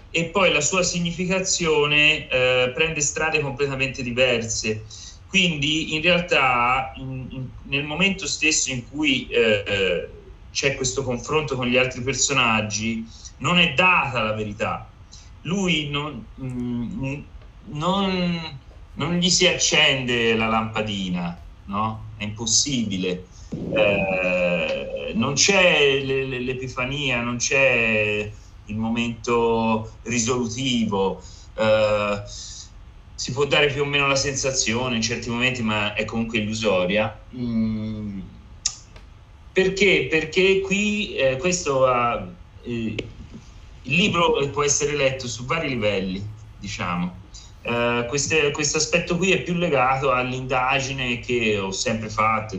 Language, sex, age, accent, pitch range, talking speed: Italian, male, 30-49, native, 105-145 Hz, 110 wpm